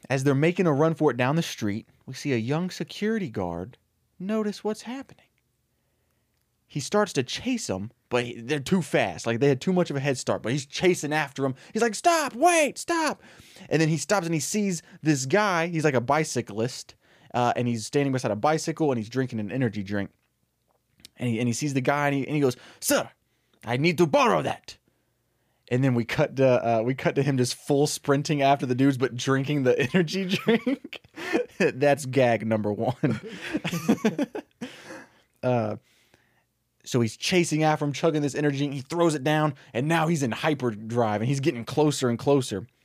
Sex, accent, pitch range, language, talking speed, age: male, American, 120-160 Hz, English, 195 wpm, 20-39